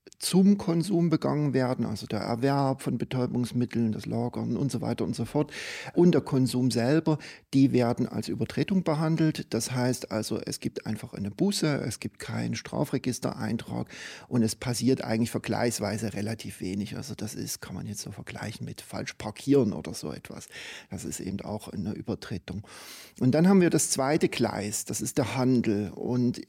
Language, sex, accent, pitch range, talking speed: German, male, German, 115-140 Hz, 175 wpm